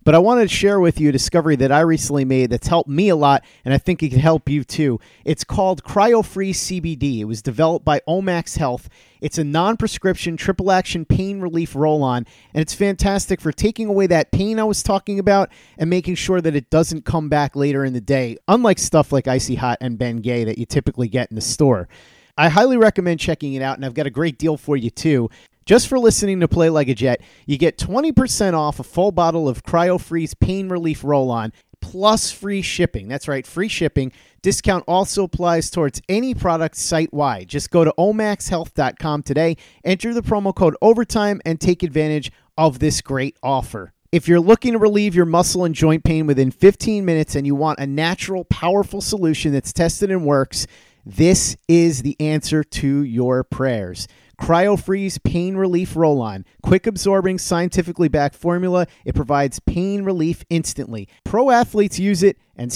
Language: English